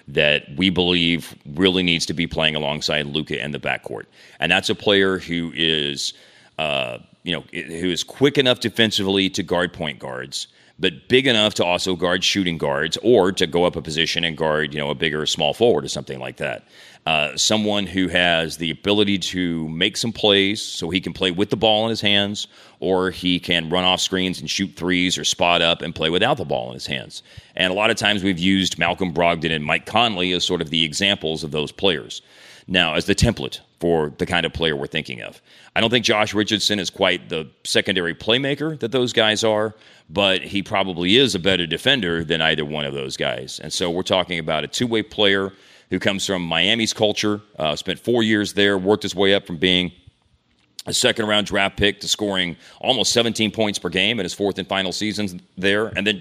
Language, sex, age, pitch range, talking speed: English, male, 30-49, 85-105 Hz, 215 wpm